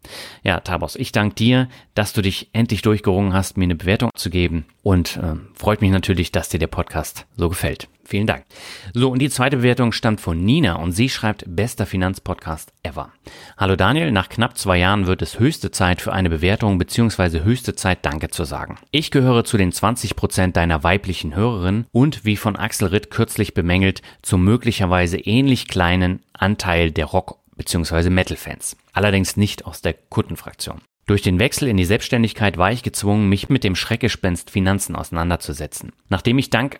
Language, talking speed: German, 180 wpm